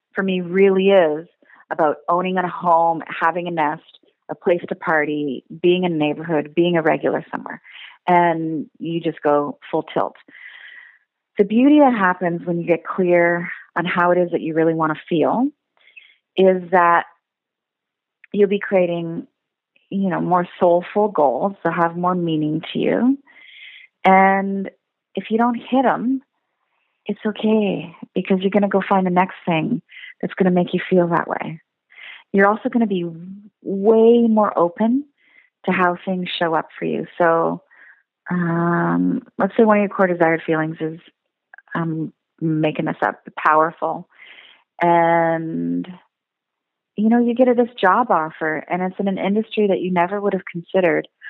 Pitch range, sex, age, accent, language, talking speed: 165-210 Hz, female, 30-49, American, English, 160 wpm